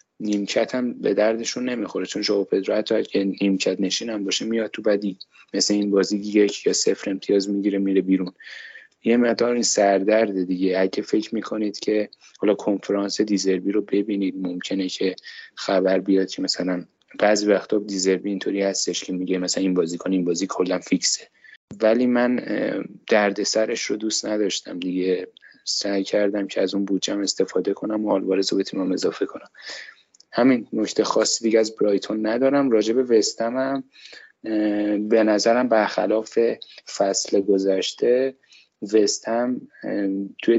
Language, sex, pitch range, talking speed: Persian, male, 95-110 Hz, 145 wpm